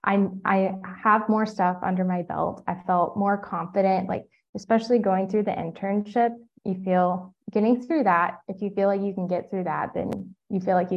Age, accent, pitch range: 20-39, American, 185-210 Hz